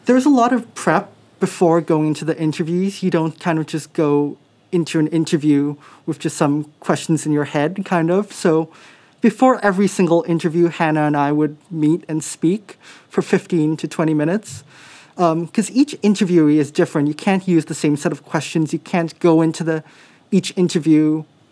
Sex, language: male, English